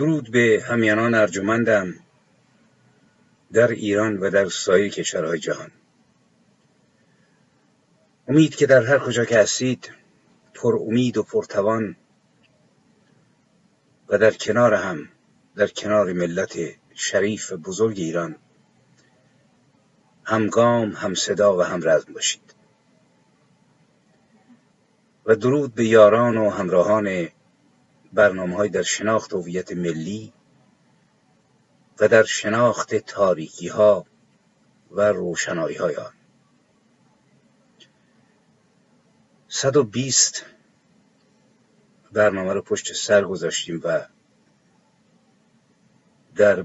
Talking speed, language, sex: 90 wpm, Persian, male